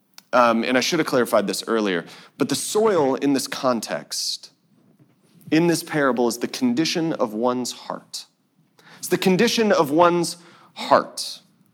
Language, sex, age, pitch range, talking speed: English, male, 30-49, 125-190 Hz, 150 wpm